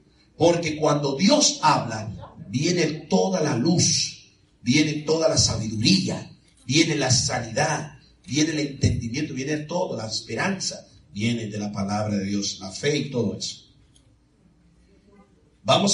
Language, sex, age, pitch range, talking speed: Spanish, male, 50-69, 110-170 Hz, 130 wpm